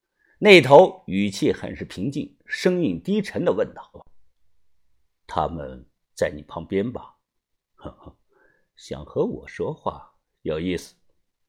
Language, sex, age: Chinese, male, 50-69